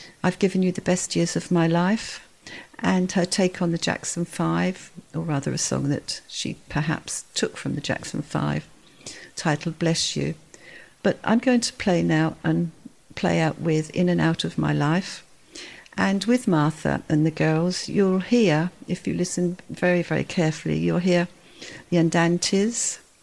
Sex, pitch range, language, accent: female, 160-185 Hz, English, British